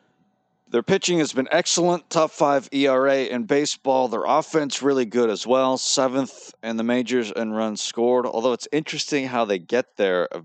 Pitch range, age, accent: 95-130 Hz, 40-59, American